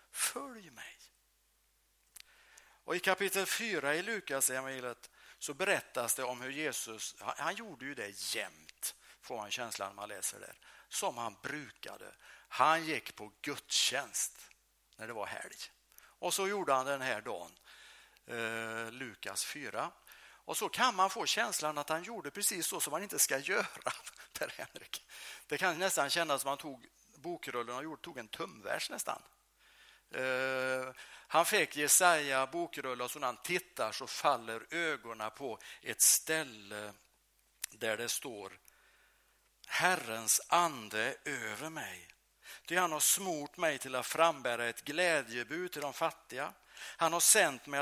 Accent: Norwegian